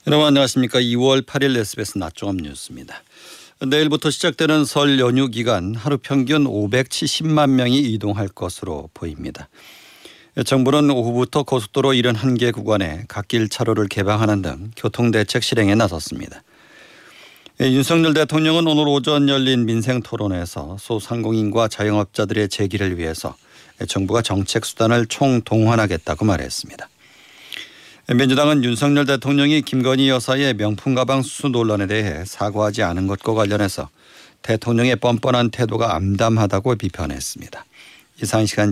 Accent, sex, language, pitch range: native, male, Korean, 105-135 Hz